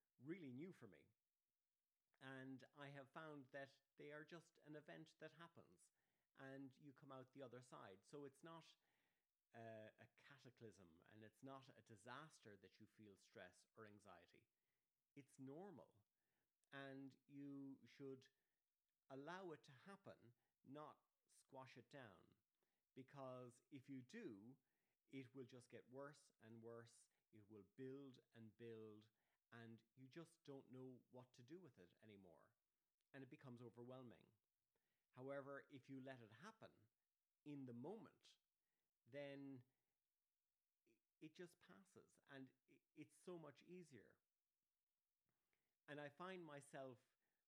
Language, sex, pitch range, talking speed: English, male, 115-145 Hz, 135 wpm